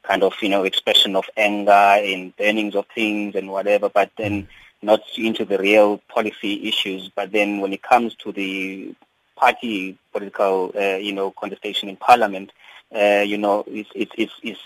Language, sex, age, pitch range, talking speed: English, male, 30-49, 100-120 Hz, 170 wpm